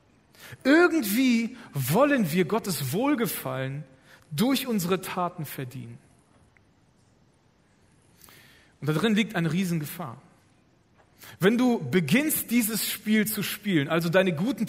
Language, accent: German, German